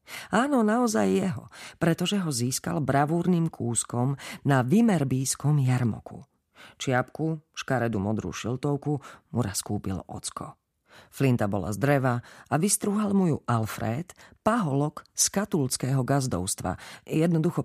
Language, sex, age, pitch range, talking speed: Slovak, female, 40-59, 115-160 Hz, 110 wpm